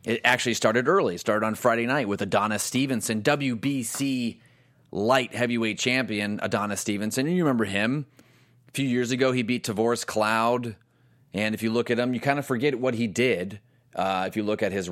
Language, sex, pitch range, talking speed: English, male, 100-125 Hz, 190 wpm